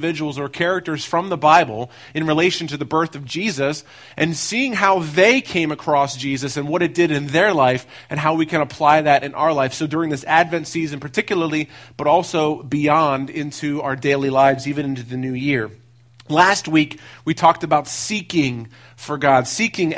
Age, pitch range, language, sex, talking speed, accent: 40-59, 145-185 Hz, English, male, 190 wpm, American